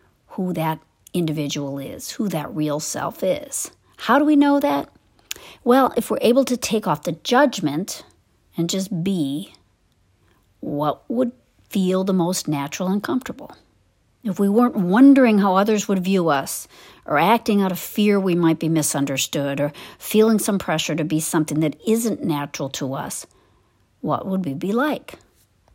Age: 50-69